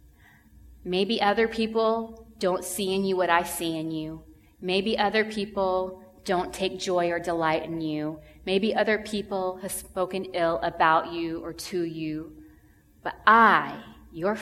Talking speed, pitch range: 150 wpm, 150-200 Hz